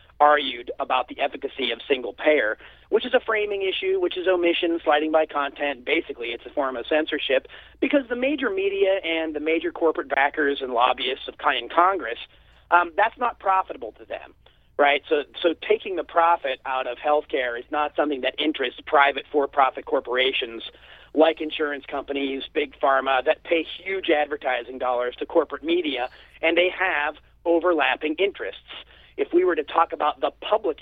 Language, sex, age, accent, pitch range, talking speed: English, male, 40-59, American, 145-220 Hz, 170 wpm